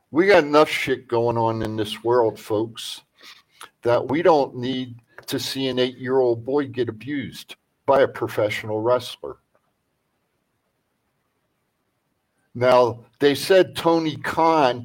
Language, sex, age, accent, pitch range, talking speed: English, male, 50-69, American, 125-170 Hz, 120 wpm